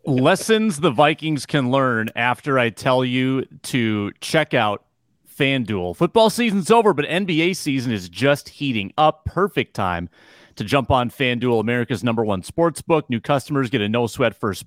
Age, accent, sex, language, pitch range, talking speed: 30-49, American, male, English, 115-145 Hz, 170 wpm